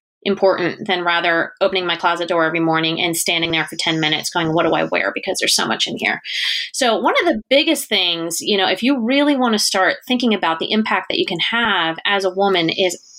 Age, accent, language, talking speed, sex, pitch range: 30-49, American, English, 235 wpm, female, 180-235 Hz